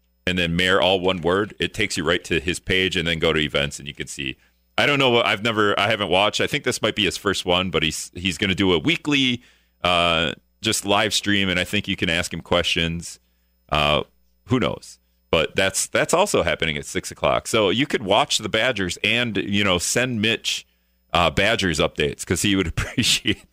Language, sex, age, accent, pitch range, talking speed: English, male, 40-59, American, 80-105 Hz, 225 wpm